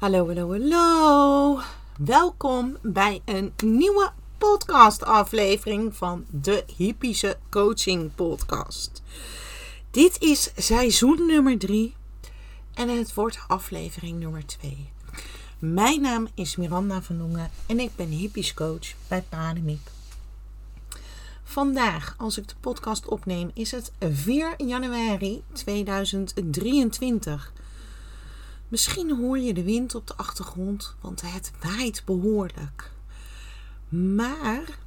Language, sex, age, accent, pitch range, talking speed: Dutch, female, 40-59, Dutch, 165-255 Hz, 105 wpm